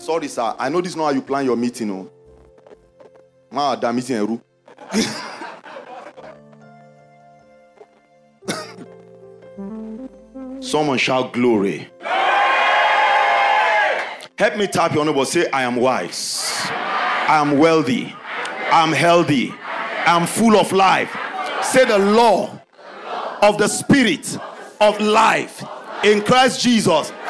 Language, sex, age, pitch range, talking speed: English, male, 50-69, 150-250 Hz, 105 wpm